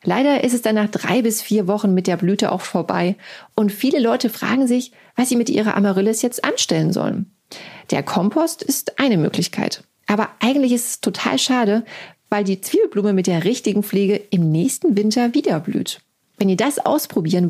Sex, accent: female, German